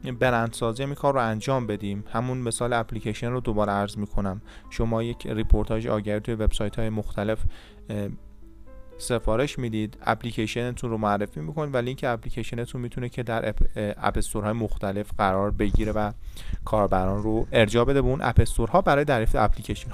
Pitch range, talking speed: 105-130 Hz, 160 wpm